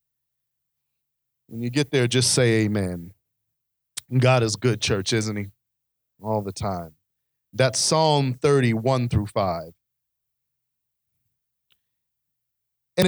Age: 40-59